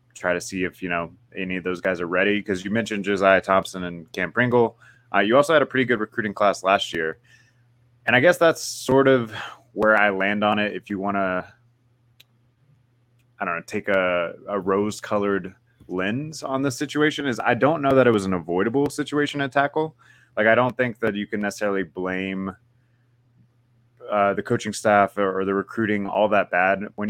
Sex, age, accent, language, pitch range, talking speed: male, 20-39, American, English, 95-120 Hz, 200 wpm